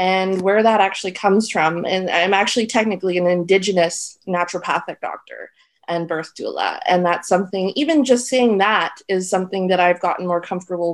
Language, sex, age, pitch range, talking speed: English, female, 20-39, 175-210 Hz, 170 wpm